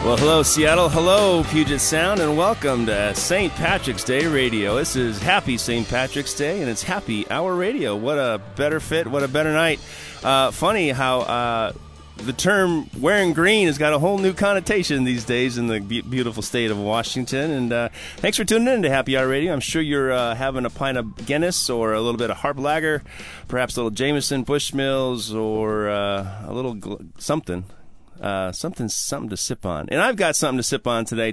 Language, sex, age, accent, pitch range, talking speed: English, male, 30-49, American, 115-150 Hz, 205 wpm